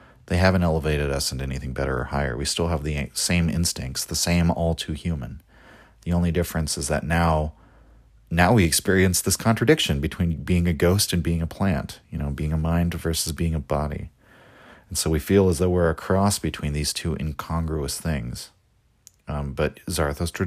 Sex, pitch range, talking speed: male, 70-90 Hz, 190 wpm